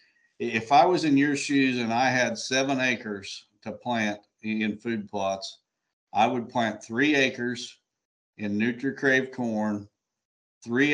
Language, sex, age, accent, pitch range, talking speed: English, male, 50-69, American, 105-130 Hz, 145 wpm